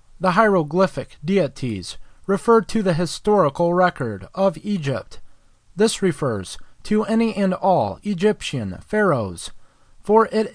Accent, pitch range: American, 120-200 Hz